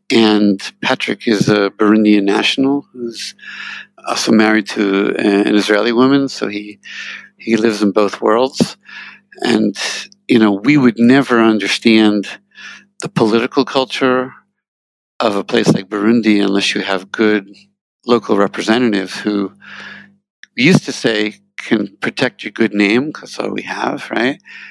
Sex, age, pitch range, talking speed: male, 60-79, 105-130 Hz, 135 wpm